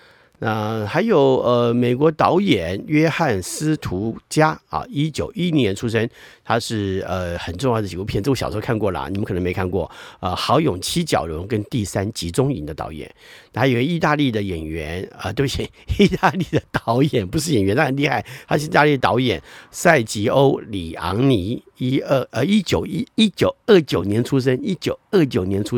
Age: 50-69